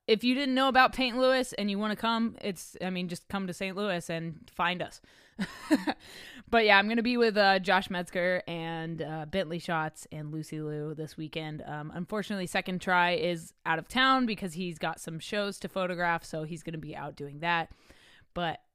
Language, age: English, 20-39